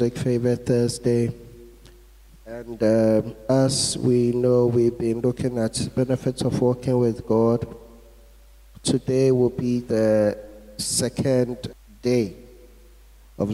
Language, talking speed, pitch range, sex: English, 105 wpm, 120-140 Hz, male